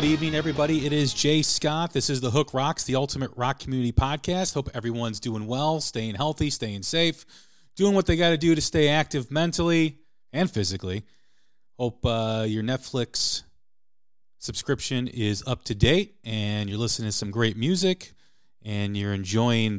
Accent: American